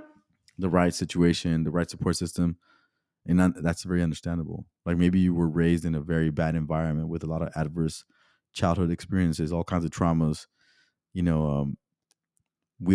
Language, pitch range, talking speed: English, 80-90 Hz, 165 wpm